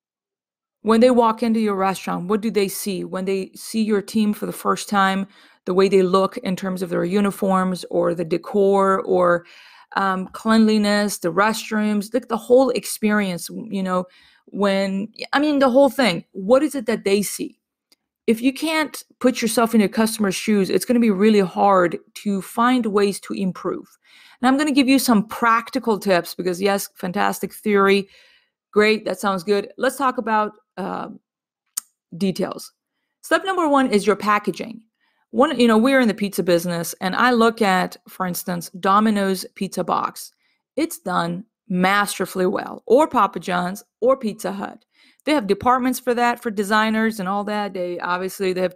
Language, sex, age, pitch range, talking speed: English, female, 30-49, 190-240 Hz, 175 wpm